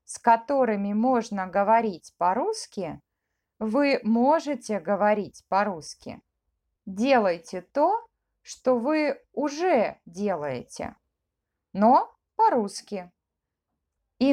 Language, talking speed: Russian, 75 wpm